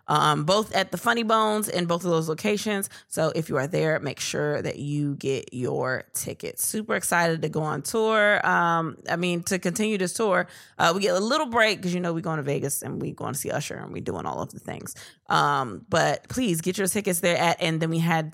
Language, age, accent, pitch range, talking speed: English, 20-39, American, 165-205 Hz, 240 wpm